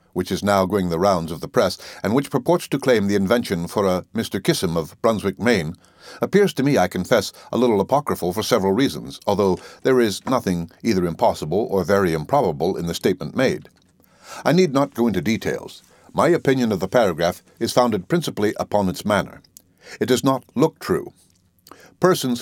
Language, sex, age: English, male, 60-79